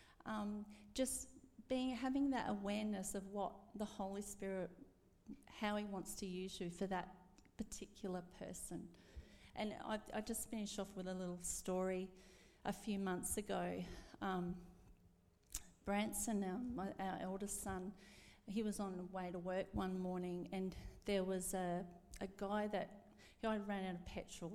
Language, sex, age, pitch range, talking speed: English, female, 40-59, 185-220 Hz, 150 wpm